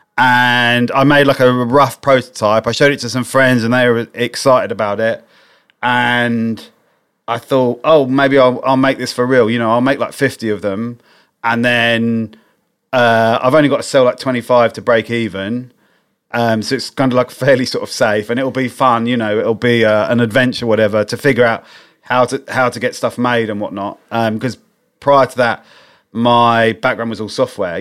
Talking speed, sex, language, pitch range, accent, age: 205 wpm, male, English, 110-130 Hz, British, 30-49